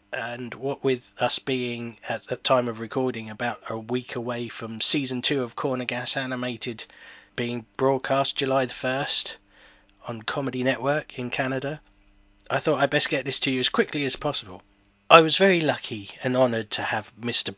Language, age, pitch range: English, 20-39, 110-135 Hz